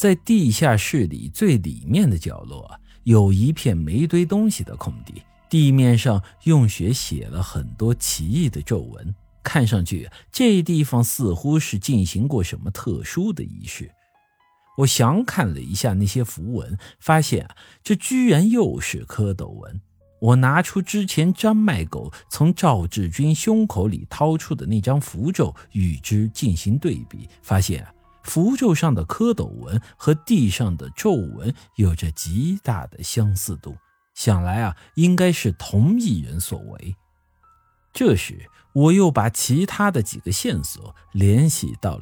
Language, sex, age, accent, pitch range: Chinese, male, 50-69, native, 95-160 Hz